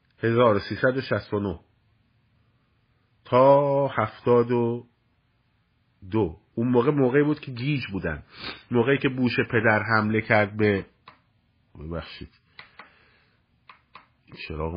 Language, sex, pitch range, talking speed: Persian, male, 105-145 Hz, 95 wpm